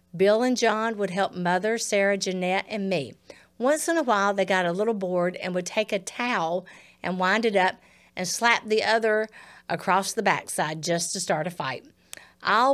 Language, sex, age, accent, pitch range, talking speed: English, female, 50-69, American, 180-220 Hz, 195 wpm